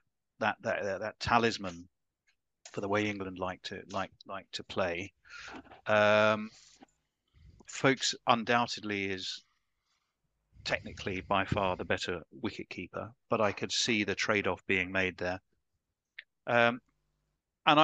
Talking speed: 125 wpm